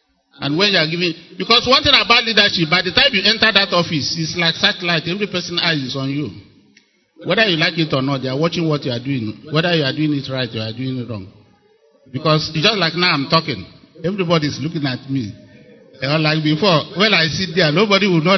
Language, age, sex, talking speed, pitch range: English, 50-69, male, 240 wpm, 145-205 Hz